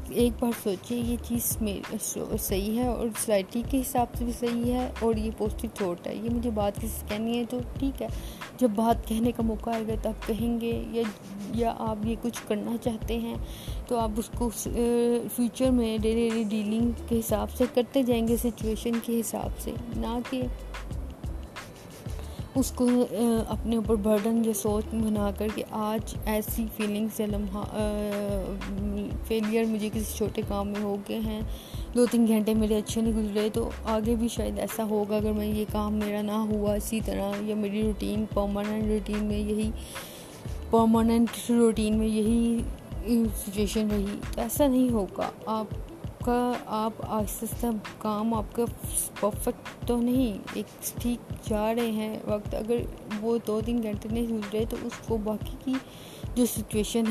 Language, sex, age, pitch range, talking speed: Urdu, female, 20-39, 210-235 Hz, 170 wpm